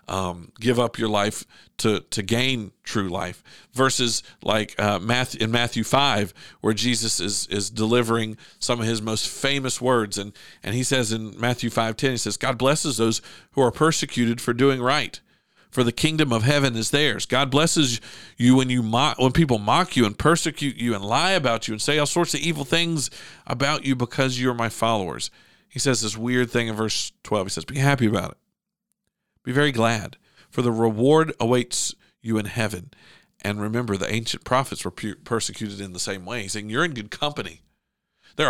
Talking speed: 195 wpm